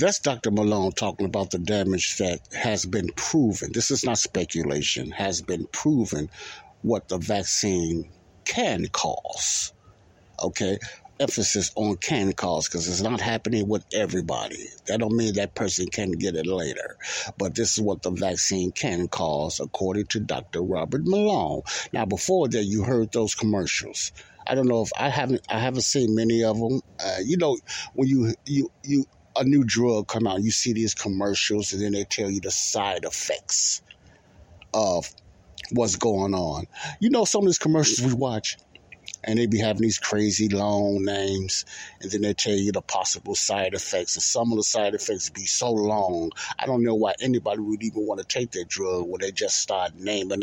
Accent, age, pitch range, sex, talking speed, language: American, 60-79, 100-120 Hz, male, 185 wpm, English